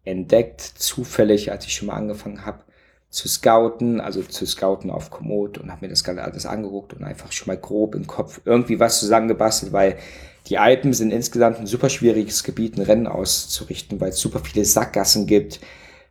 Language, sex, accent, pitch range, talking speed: German, male, German, 100-120 Hz, 185 wpm